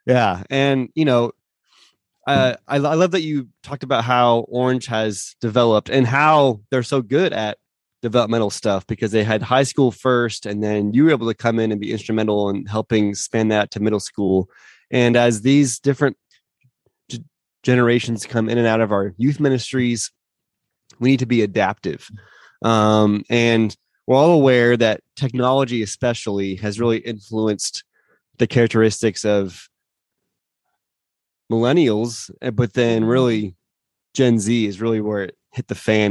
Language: English